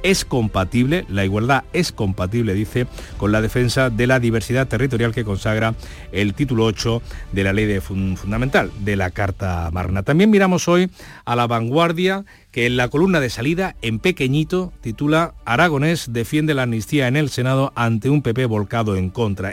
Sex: male